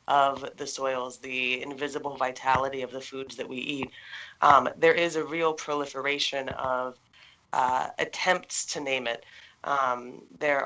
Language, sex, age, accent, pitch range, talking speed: English, female, 20-39, American, 130-145 Hz, 145 wpm